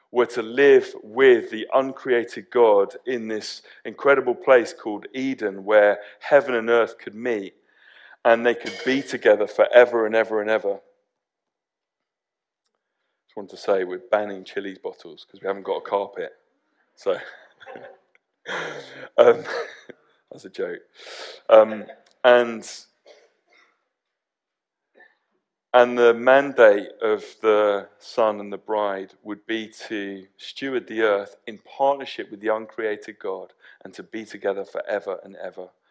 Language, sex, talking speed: English, male, 130 wpm